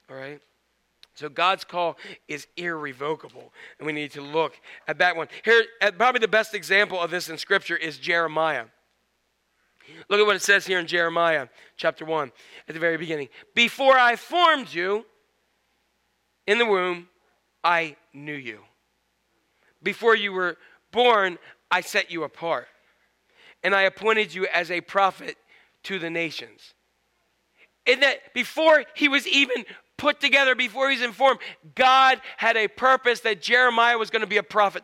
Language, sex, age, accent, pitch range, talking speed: English, male, 40-59, American, 165-245 Hz, 155 wpm